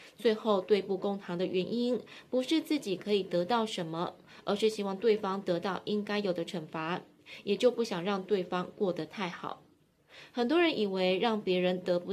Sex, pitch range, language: female, 180-220 Hz, Chinese